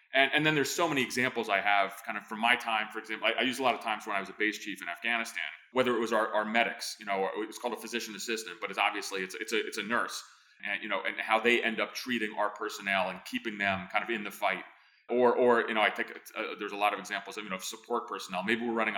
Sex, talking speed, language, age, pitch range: male, 295 wpm, English, 30-49, 105-120 Hz